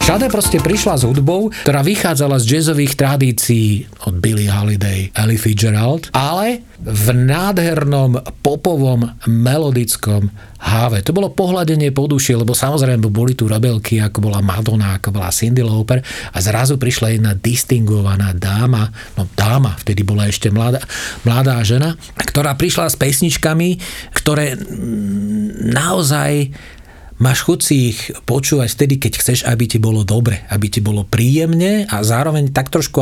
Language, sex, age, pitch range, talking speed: Slovak, male, 40-59, 105-140 Hz, 140 wpm